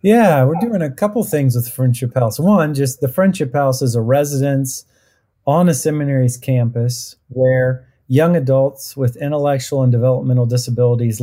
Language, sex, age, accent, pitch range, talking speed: English, male, 40-59, American, 120-140 Hz, 155 wpm